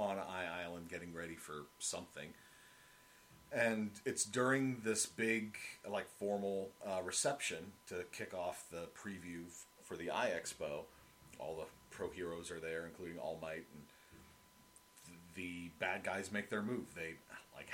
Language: English